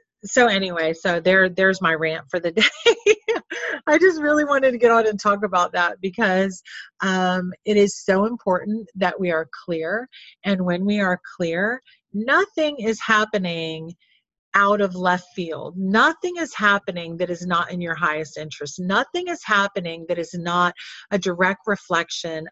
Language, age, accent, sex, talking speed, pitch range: English, 40-59, American, female, 165 wpm, 170-230 Hz